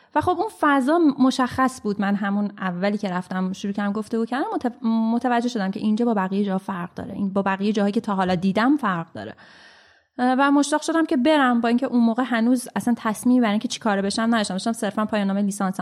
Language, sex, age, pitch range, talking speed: Persian, female, 30-49, 205-280 Hz, 215 wpm